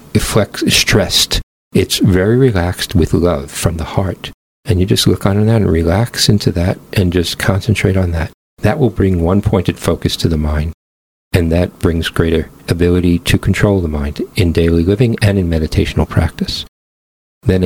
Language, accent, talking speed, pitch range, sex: English, American, 165 wpm, 80-105 Hz, male